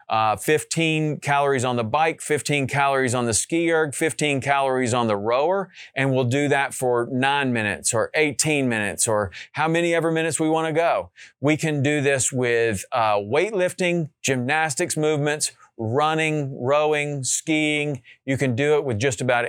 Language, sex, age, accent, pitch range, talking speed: English, male, 40-59, American, 120-150 Hz, 170 wpm